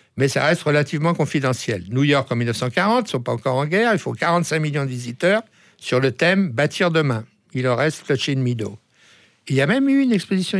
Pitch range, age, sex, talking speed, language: 120-170 Hz, 60-79, male, 245 wpm, French